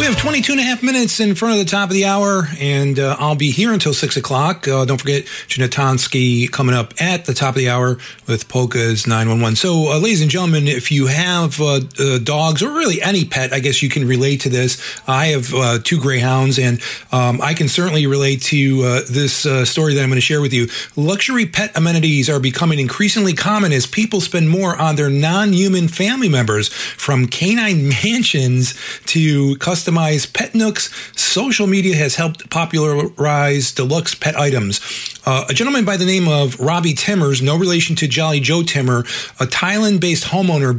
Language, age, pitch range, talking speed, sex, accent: English, 40-59, 135-175 Hz, 195 wpm, male, American